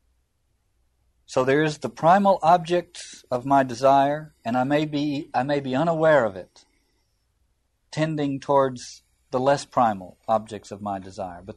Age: 50-69